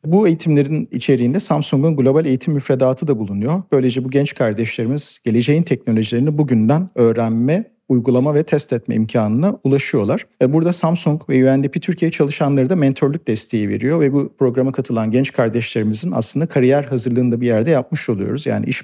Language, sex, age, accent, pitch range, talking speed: Turkish, male, 50-69, native, 115-145 Hz, 155 wpm